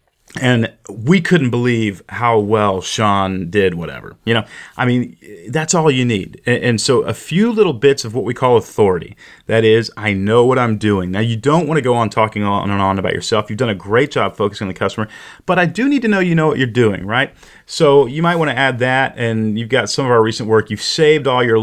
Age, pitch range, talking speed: 30-49, 105-130 Hz, 245 wpm